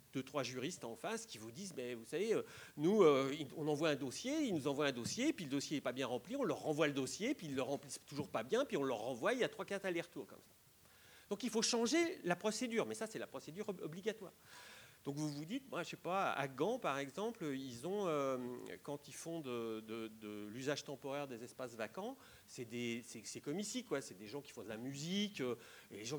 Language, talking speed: French, 240 wpm